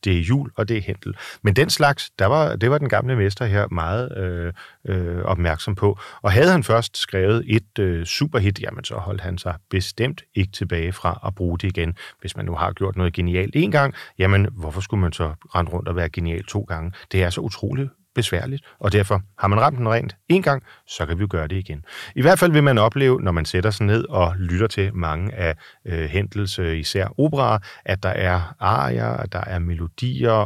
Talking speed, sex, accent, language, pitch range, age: 225 wpm, male, native, Danish, 90-115 Hz, 40-59